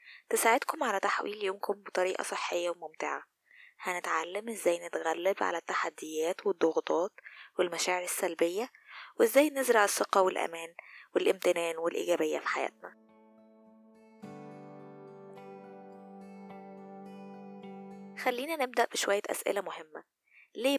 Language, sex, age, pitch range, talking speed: Arabic, female, 20-39, 175-255 Hz, 85 wpm